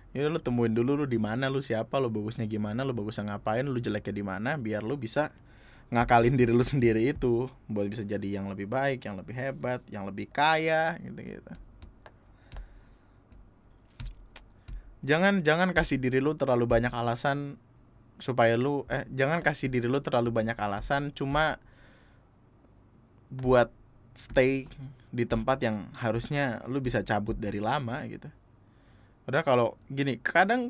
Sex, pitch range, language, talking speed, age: male, 110-135 Hz, Indonesian, 150 wpm, 20-39